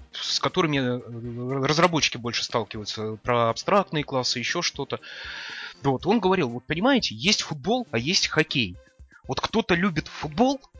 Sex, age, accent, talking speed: male, 20-39, native, 135 wpm